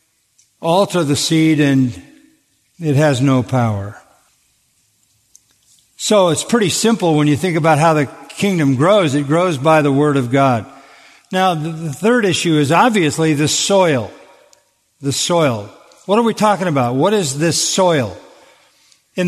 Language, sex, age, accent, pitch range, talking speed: English, male, 50-69, American, 145-190 Hz, 145 wpm